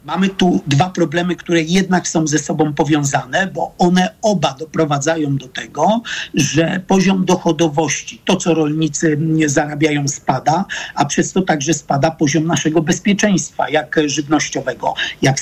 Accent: native